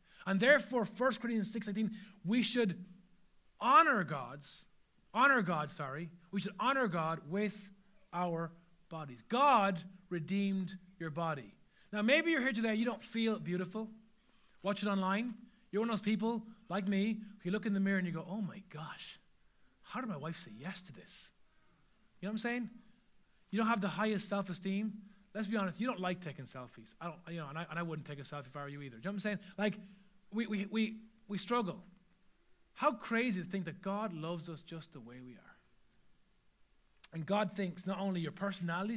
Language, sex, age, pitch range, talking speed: English, male, 30-49, 175-220 Hz, 195 wpm